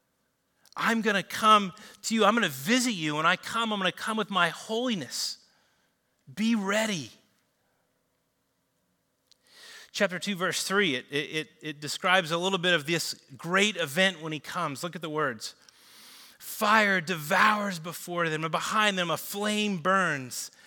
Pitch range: 150-210 Hz